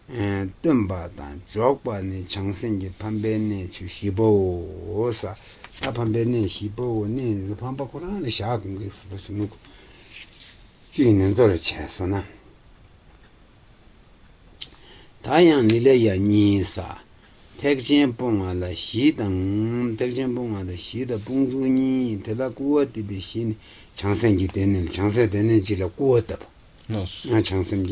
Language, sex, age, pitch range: Italian, male, 60-79, 95-115 Hz